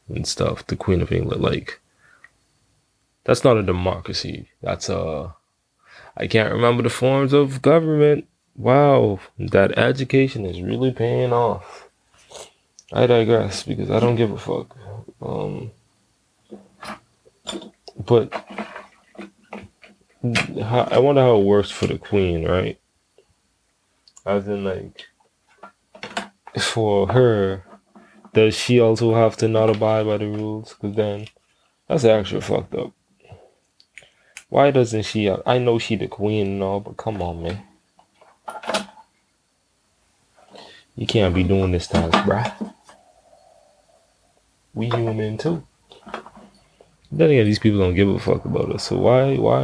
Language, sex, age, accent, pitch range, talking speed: English, male, 20-39, American, 100-120 Hz, 125 wpm